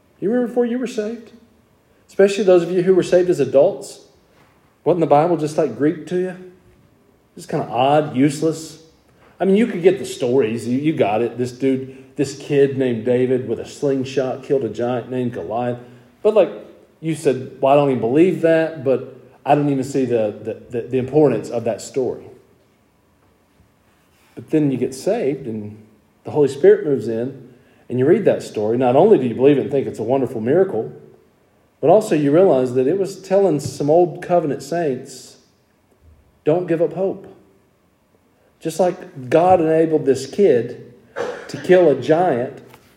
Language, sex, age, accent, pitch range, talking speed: English, male, 40-59, American, 125-180 Hz, 180 wpm